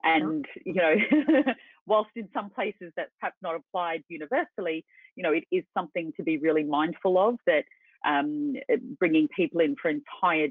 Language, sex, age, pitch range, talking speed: English, female, 30-49, 155-230 Hz, 165 wpm